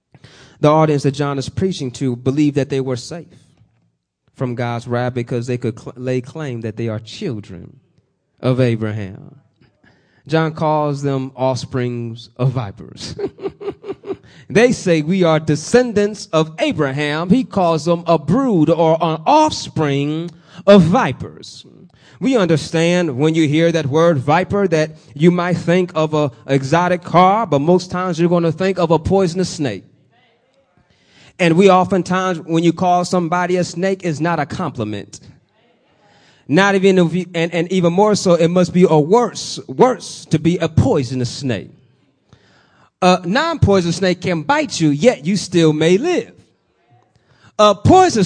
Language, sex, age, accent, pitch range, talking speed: English, male, 30-49, American, 140-185 Hz, 155 wpm